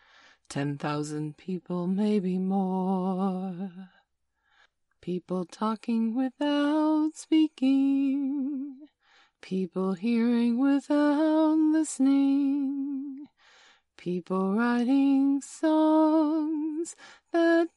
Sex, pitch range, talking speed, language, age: female, 190-290 Hz, 55 wpm, English, 30-49